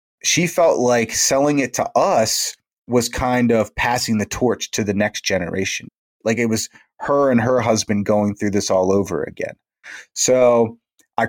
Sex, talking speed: male, 170 wpm